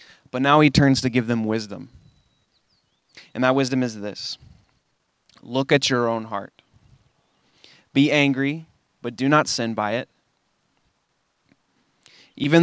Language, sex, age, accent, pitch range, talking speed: English, male, 20-39, American, 115-140 Hz, 130 wpm